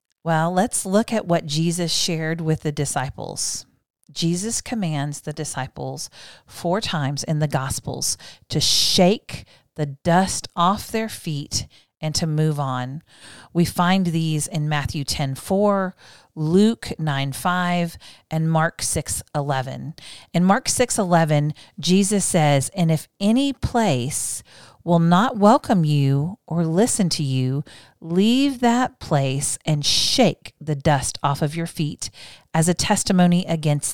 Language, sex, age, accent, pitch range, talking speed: English, female, 40-59, American, 145-180 Hz, 135 wpm